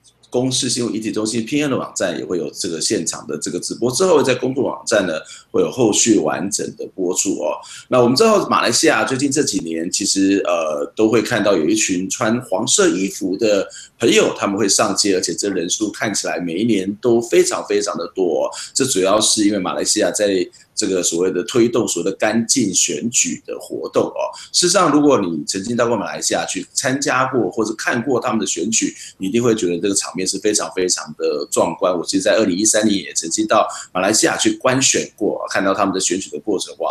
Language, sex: Chinese, male